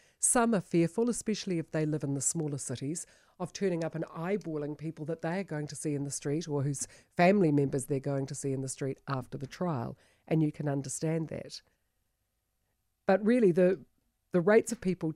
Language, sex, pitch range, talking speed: English, female, 140-175 Hz, 205 wpm